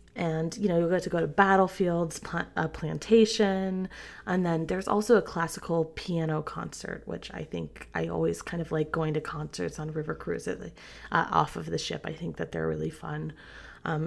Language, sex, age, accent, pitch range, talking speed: English, female, 20-39, American, 155-190 Hz, 200 wpm